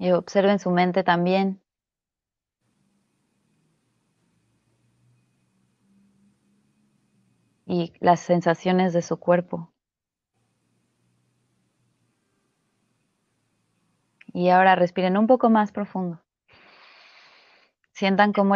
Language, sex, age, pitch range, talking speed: Spanish, female, 20-39, 165-200 Hz, 65 wpm